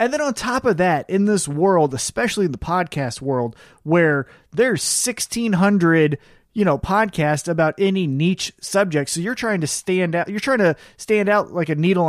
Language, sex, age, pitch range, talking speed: English, male, 30-49, 150-205 Hz, 195 wpm